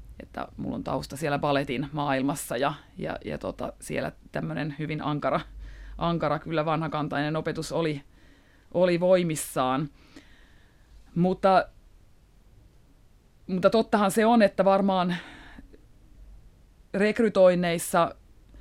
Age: 30-49